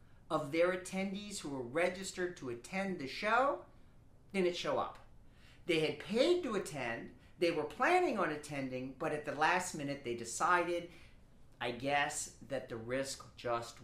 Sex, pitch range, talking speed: male, 130-185 Hz, 155 wpm